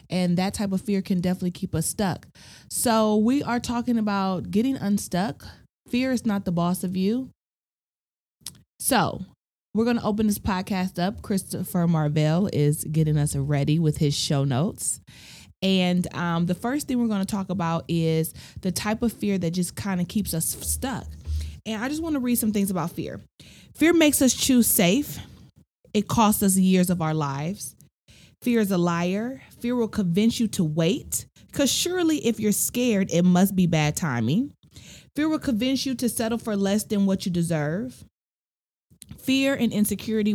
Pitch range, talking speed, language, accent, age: 175-230 Hz, 180 wpm, English, American, 30-49